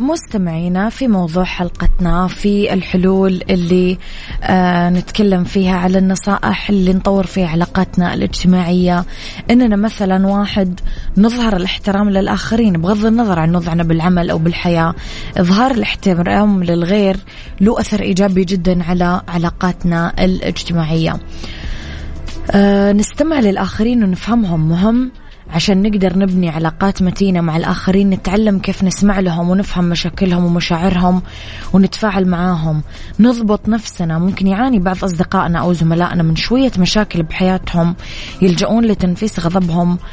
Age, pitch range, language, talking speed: 20-39, 175-200 Hz, Arabic, 115 wpm